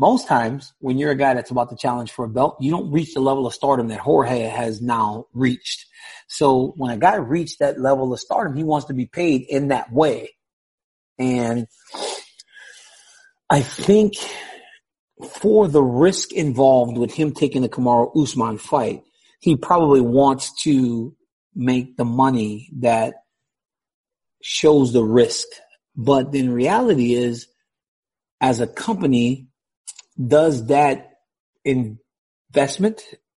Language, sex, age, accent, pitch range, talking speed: English, male, 40-59, American, 120-150 Hz, 140 wpm